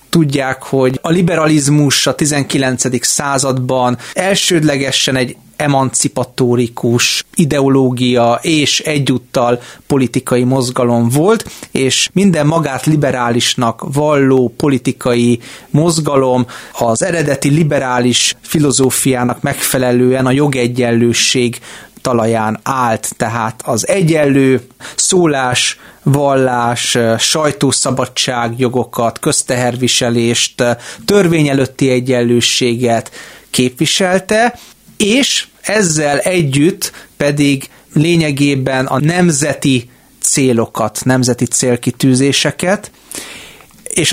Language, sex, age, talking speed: Hungarian, male, 30-49, 75 wpm